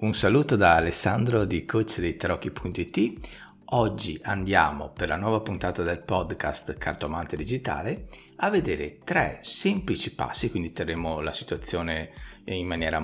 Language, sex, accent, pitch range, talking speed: Italian, male, native, 85-120 Hz, 135 wpm